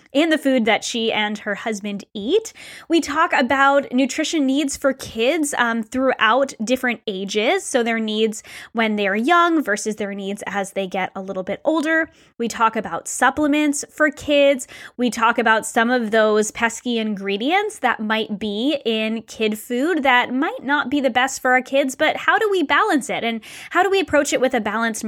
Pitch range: 220-290 Hz